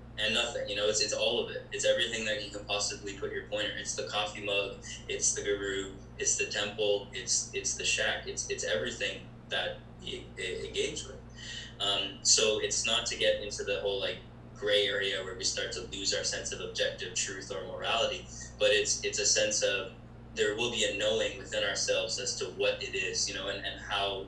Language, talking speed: English, 210 wpm